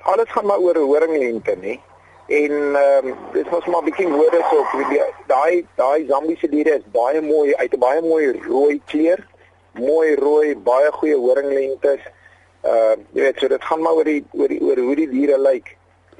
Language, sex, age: English, male, 40-59